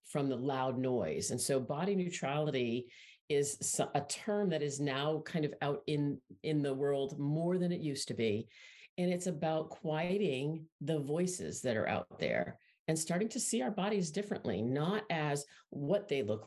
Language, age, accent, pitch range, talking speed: English, 50-69, American, 135-160 Hz, 180 wpm